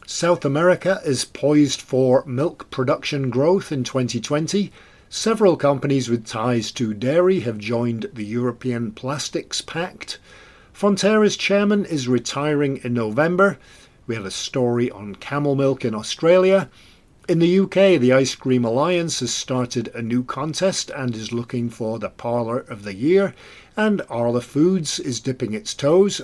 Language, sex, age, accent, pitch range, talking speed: English, male, 50-69, British, 120-175 Hz, 150 wpm